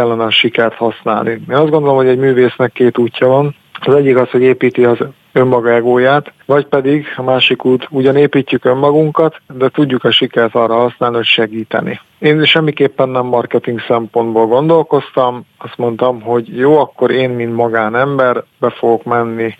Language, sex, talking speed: Hungarian, male, 170 wpm